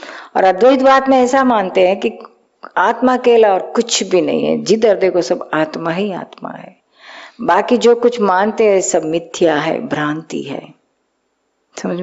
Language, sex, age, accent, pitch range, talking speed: Hindi, female, 50-69, native, 170-235 Hz, 160 wpm